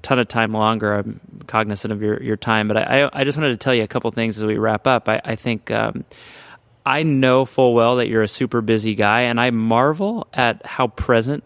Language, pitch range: English, 110-130 Hz